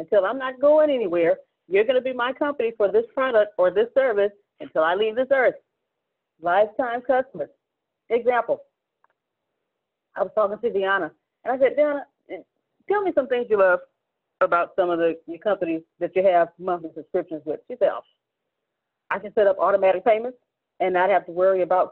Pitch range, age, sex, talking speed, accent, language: 185-265 Hz, 30-49, female, 175 wpm, American, English